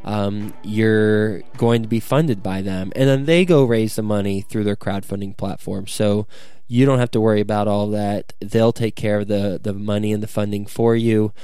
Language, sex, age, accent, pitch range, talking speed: English, male, 20-39, American, 105-125 Hz, 210 wpm